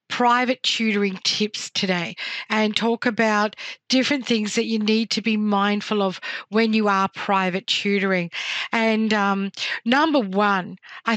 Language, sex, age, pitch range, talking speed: English, female, 50-69, 200-235 Hz, 140 wpm